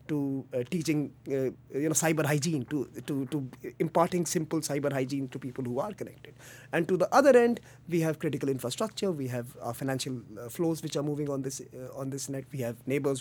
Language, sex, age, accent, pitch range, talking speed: English, male, 30-49, Indian, 130-165 Hz, 215 wpm